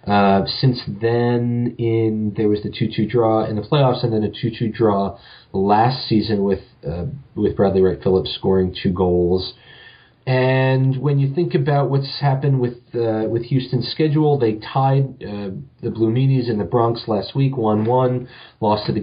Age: 40-59